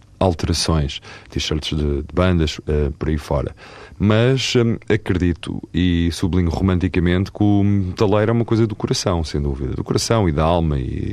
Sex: male